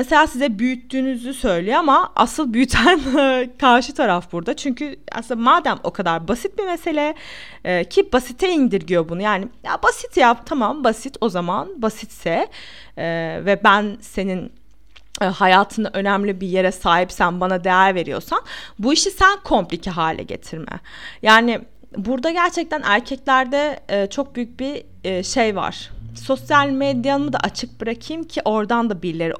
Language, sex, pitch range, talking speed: Turkish, female, 205-285 Hz, 145 wpm